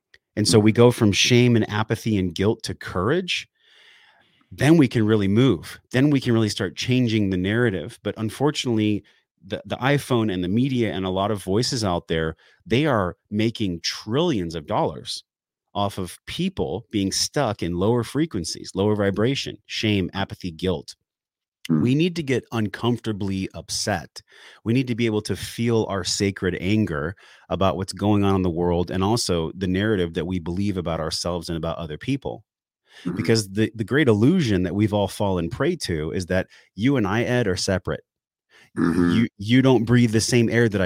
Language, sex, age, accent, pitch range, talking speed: English, male, 30-49, American, 90-115 Hz, 180 wpm